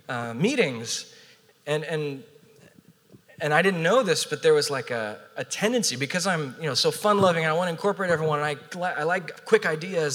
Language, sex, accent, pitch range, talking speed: English, male, American, 150-205 Hz, 200 wpm